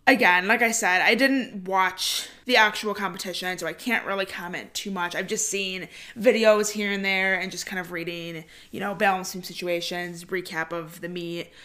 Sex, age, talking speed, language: female, 20-39, 190 wpm, English